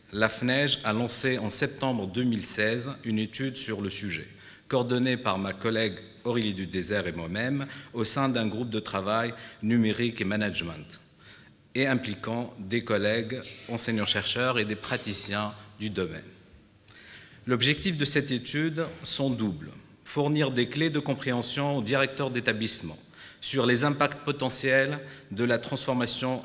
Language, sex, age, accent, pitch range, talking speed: French, male, 50-69, French, 105-135 Hz, 135 wpm